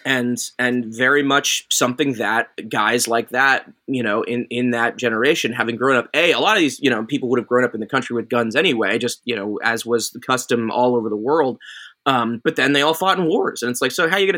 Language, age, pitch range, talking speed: English, 20-39, 120-150 Hz, 265 wpm